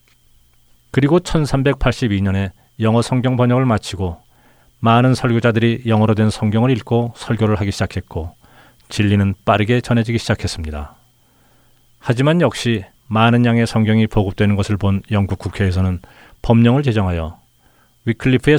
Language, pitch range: Korean, 100-125 Hz